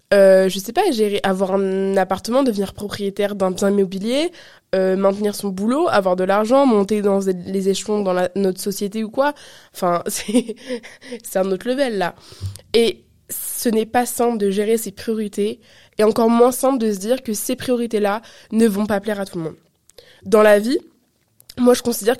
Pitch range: 200-235 Hz